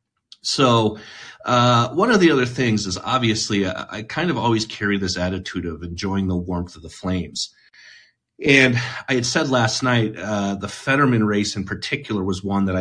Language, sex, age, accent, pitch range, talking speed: English, male, 30-49, American, 95-120 Hz, 185 wpm